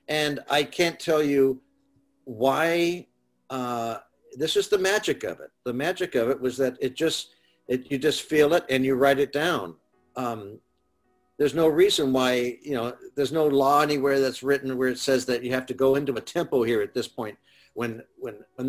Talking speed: 200 wpm